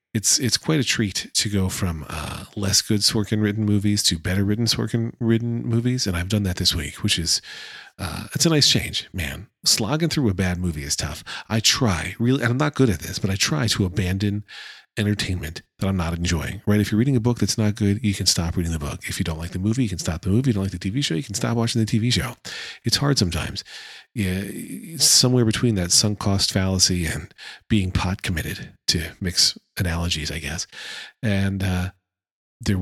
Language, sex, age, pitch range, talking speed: English, male, 40-59, 90-115 Hz, 220 wpm